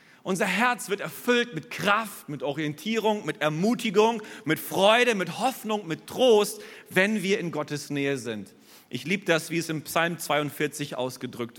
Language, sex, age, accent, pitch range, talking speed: German, male, 40-59, German, 150-195 Hz, 160 wpm